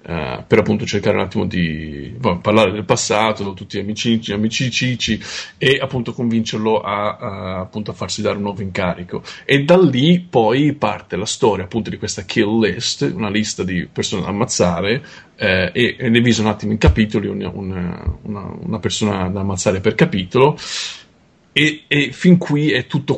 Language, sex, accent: Italian, male, native